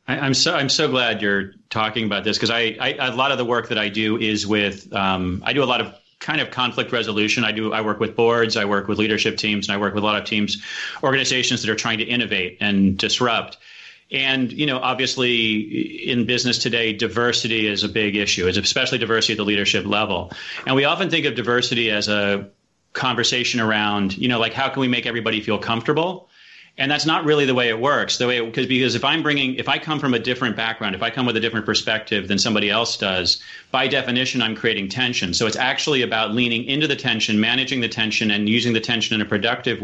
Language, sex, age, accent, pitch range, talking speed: English, male, 30-49, American, 105-125 Hz, 230 wpm